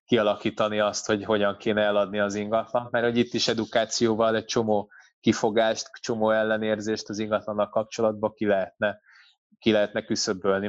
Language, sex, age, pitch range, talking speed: Hungarian, male, 20-39, 105-115 Hz, 145 wpm